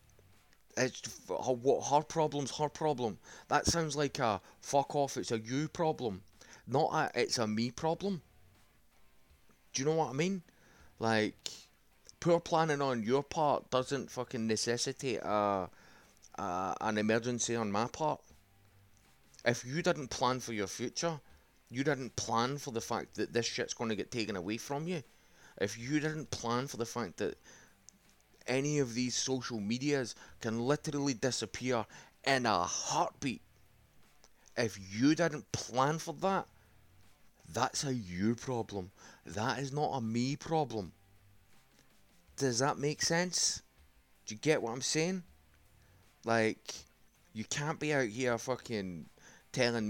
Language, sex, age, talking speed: English, male, 30-49, 145 wpm